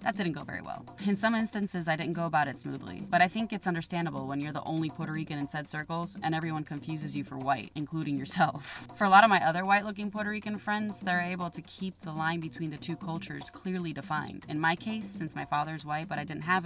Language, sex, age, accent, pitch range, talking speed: Spanish, female, 20-39, American, 155-185 Hz, 250 wpm